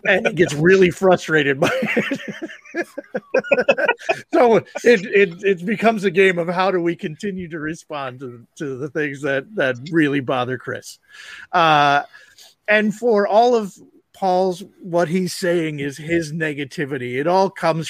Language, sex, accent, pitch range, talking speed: English, male, American, 145-180 Hz, 150 wpm